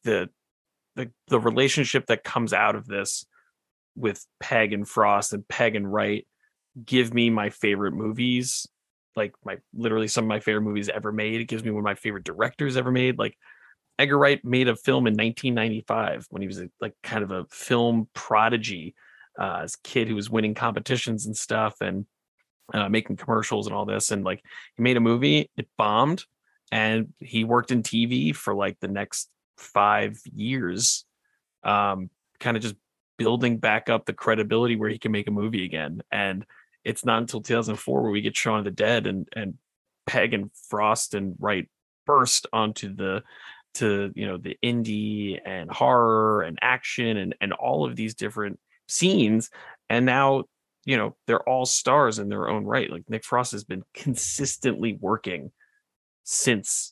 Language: English